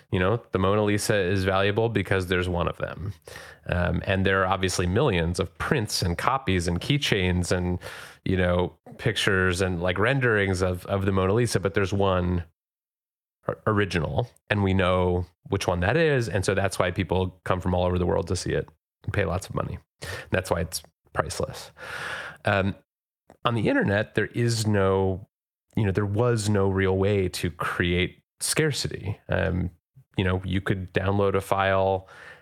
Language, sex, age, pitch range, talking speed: English, male, 30-49, 90-100 Hz, 180 wpm